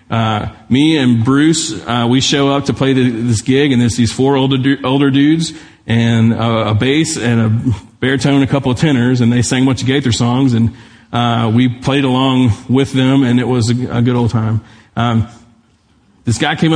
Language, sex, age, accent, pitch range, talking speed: English, male, 40-59, American, 115-135 Hz, 205 wpm